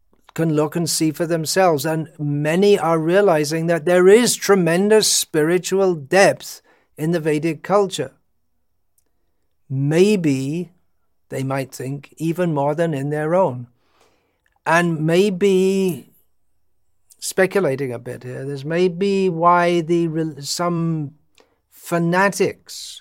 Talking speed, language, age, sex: 110 wpm, English, 60-79, male